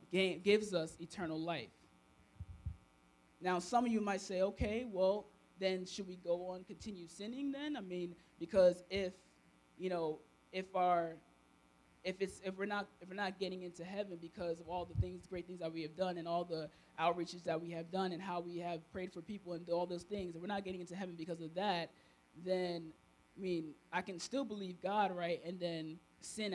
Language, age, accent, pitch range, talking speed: English, 20-39, American, 170-220 Hz, 205 wpm